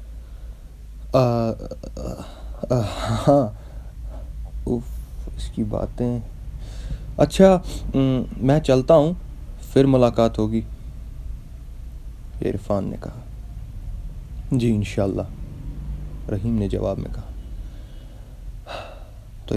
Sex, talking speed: male, 70 wpm